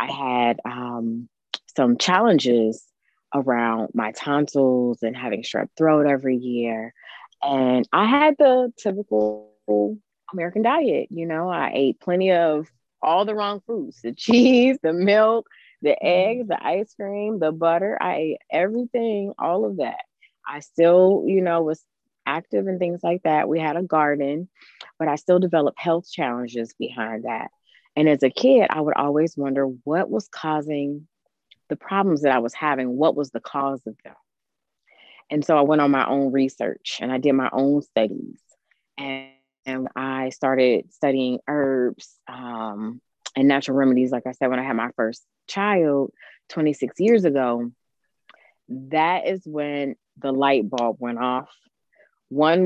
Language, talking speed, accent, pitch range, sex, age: English, 155 wpm, American, 130-175 Hz, female, 20-39